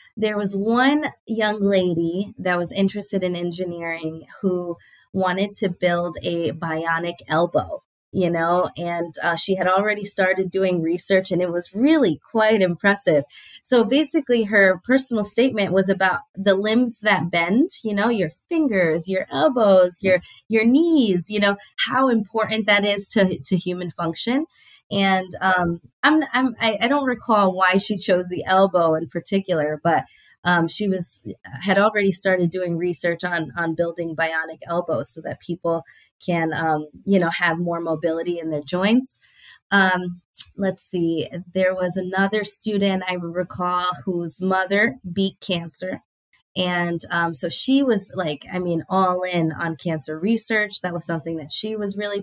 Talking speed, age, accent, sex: 155 wpm, 20-39, American, female